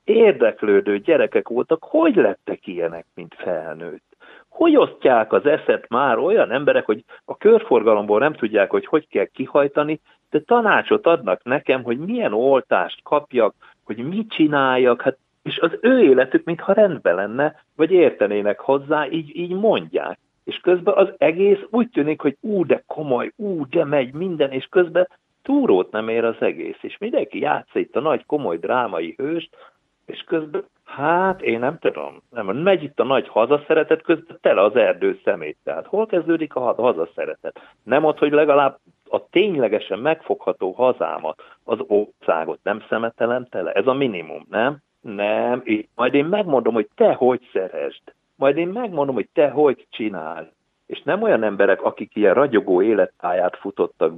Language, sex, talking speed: Hungarian, male, 155 wpm